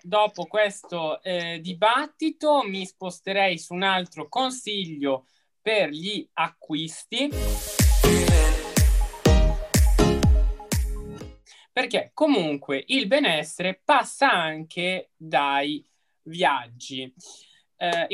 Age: 20-39